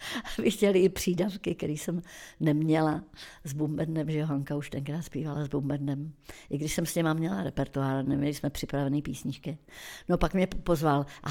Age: 60-79